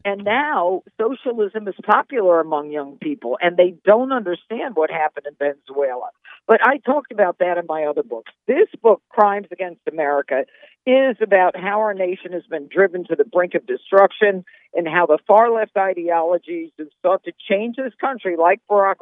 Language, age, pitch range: English, 50-69, 175-230 Hz